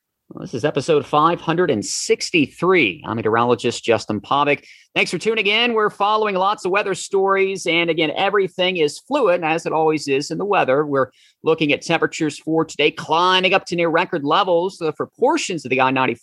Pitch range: 130-180 Hz